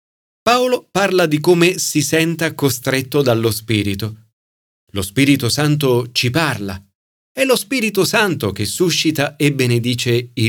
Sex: male